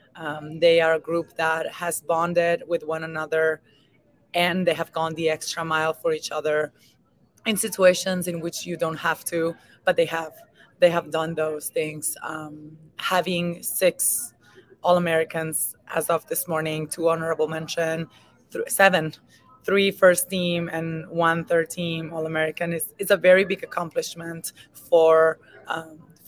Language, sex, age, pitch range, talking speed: English, female, 20-39, 160-175 Hz, 150 wpm